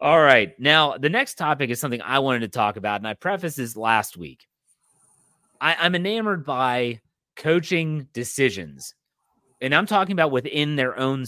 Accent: American